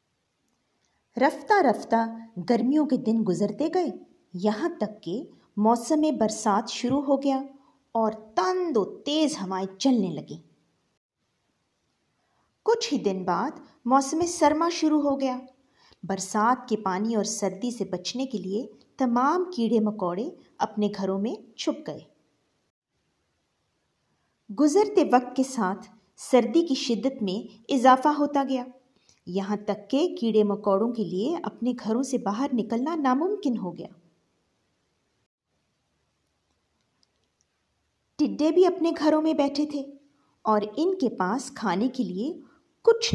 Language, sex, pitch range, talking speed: English, female, 215-290 Hz, 125 wpm